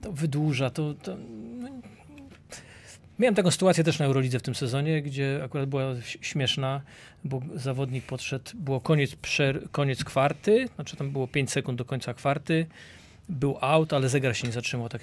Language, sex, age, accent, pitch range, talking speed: Polish, male, 40-59, native, 130-165 Hz, 160 wpm